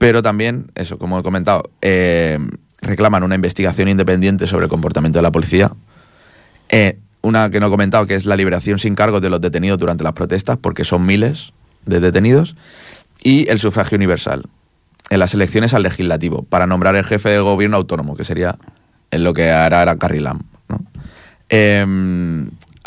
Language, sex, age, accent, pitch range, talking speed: Spanish, male, 30-49, Spanish, 90-110 Hz, 180 wpm